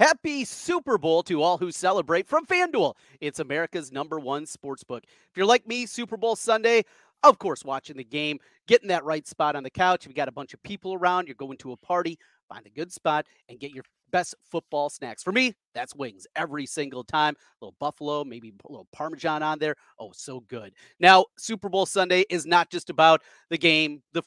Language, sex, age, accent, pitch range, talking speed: English, male, 30-49, American, 150-210 Hz, 215 wpm